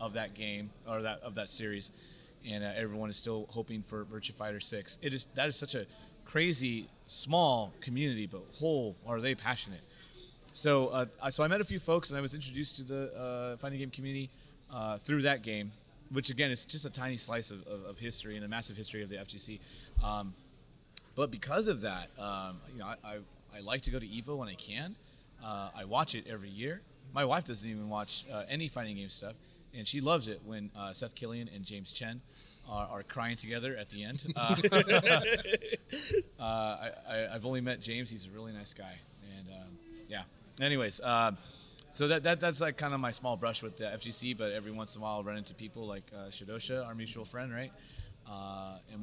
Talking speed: 215 wpm